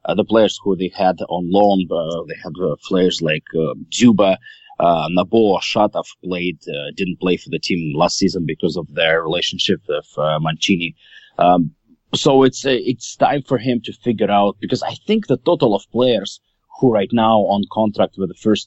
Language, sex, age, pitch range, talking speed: English, male, 30-49, 90-125 Hz, 195 wpm